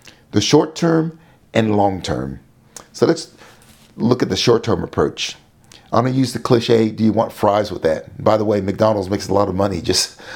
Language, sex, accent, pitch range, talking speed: English, male, American, 105-120 Hz, 185 wpm